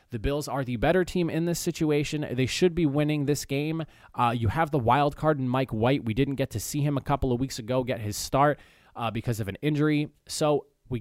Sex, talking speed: male, 245 wpm